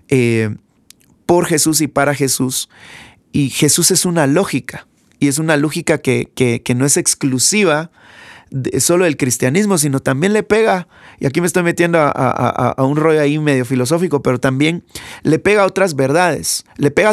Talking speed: 170 wpm